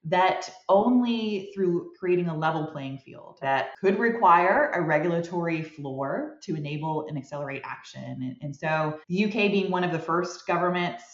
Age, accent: 20-39, American